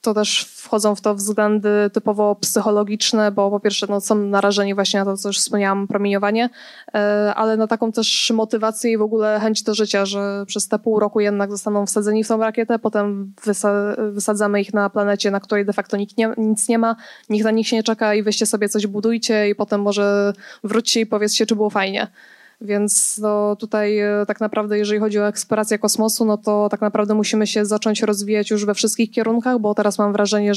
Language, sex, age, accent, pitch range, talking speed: Polish, female, 20-39, native, 205-220 Hz, 200 wpm